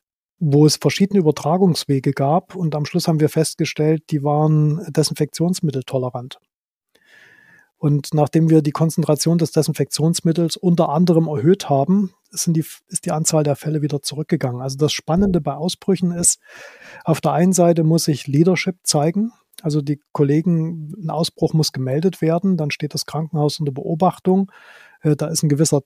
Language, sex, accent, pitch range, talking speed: German, male, German, 150-170 Hz, 155 wpm